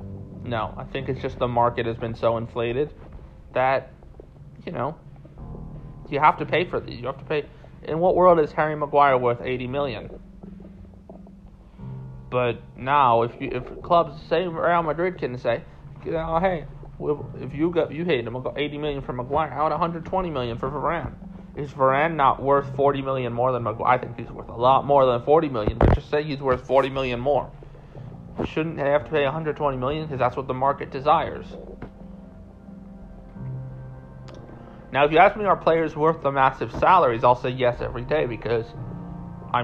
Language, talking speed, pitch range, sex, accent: English, 185 wpm, 120-150 Hz, male, American